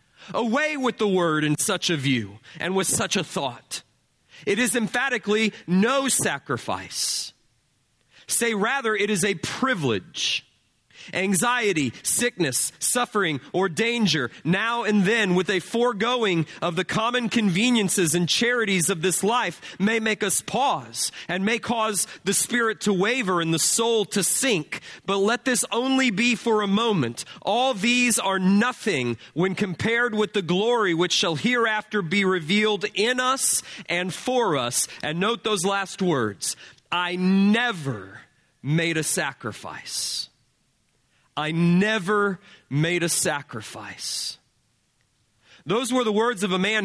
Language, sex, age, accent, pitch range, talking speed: English, male, 30-49, American, 165-225 Hz, 140 wpm